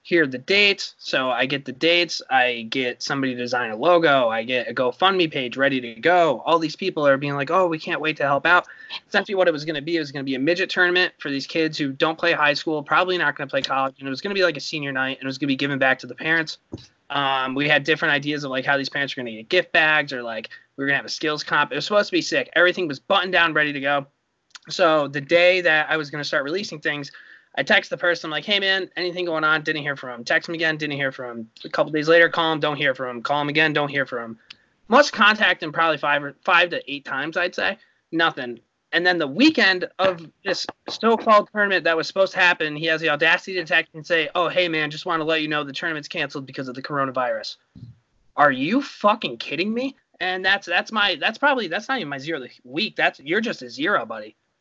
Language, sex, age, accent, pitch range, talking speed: English, male, 20-39, American, 140-180 Hz, 270 wpm